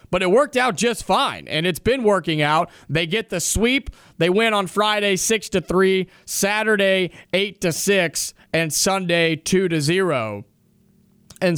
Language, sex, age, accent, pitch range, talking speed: English, male, 30-49, American, 160-205 Hz, 165 wpm